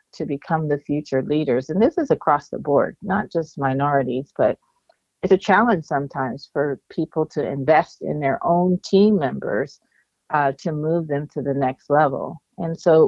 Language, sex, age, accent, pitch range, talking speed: English, female, 40-59, American, 140-180 Hz, 175 wpm